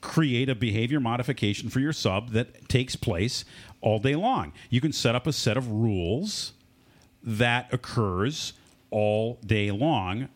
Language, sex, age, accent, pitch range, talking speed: English, male, 40-59, American, 95-130 Hz, 150 wpm